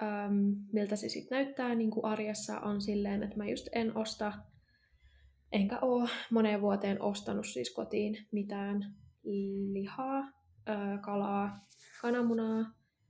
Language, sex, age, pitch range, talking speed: Finnish, female, 20-39, 200-220 Hz, 120 wpm